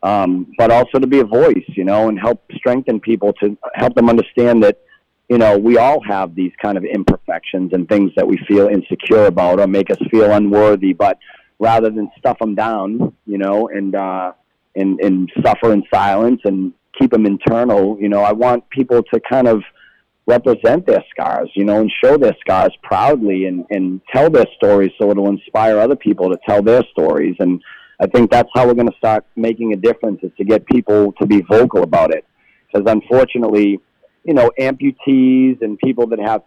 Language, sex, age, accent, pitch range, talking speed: English, male, 40-59, American, 100-120 Hz, 195 wpm